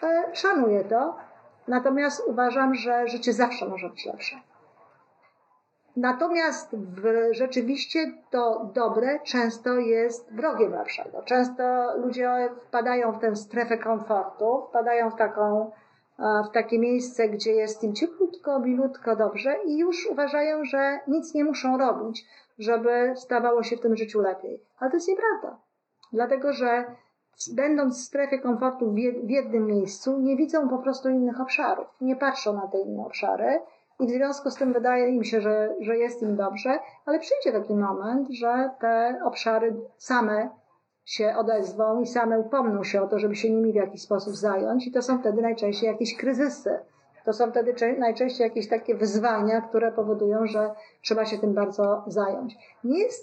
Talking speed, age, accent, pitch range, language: 155 wpm, 50-69, native, 220-265 Hz, Polish